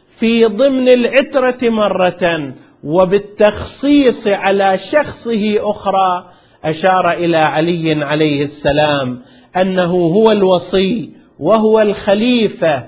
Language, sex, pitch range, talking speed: Arabic, male, 165-205 Hz, 85 wpm